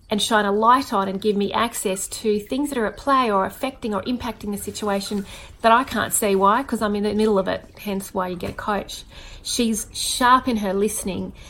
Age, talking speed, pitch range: 30-49, 230 wpm, 195-235 Hz